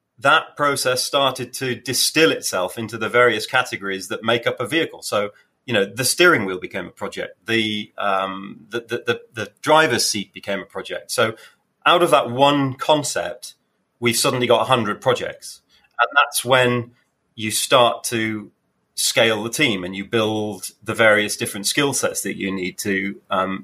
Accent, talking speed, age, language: British, 175 wpm, 30-49, English